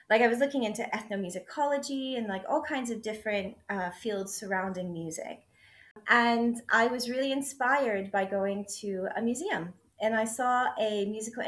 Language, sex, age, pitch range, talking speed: English, female, 30-49, 205-270 Hz, 160 wpm